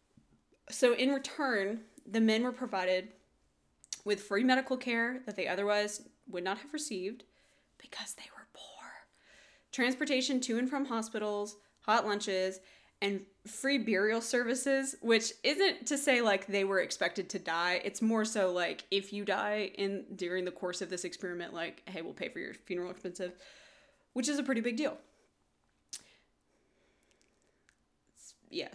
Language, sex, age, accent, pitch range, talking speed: English, female, 20-39, American, 195-250 Hz, 150 wpm